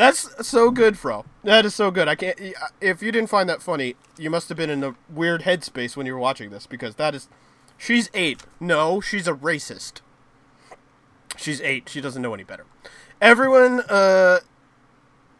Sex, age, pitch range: male, 30-49, 135-200 Hz